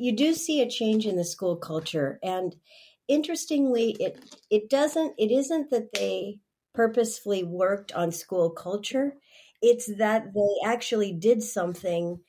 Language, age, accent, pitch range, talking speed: English, 50-69, American, 170-220 Hz, 140 wpm